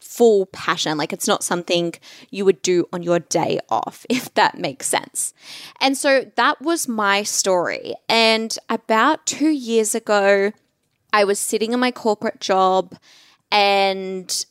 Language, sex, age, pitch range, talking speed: English, female, 10-29, 195-245 Hz, 150 wpm